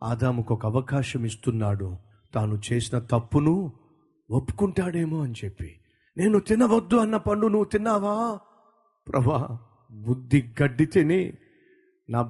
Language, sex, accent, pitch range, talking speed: Telugu, male, native, 120-190 Hz, 100 wpm